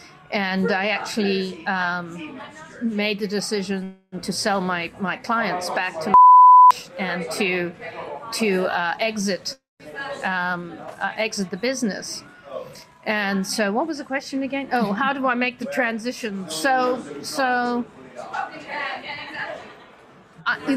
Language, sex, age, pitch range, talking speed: English, female, 50-69, 190-250 Hz, 120 wpm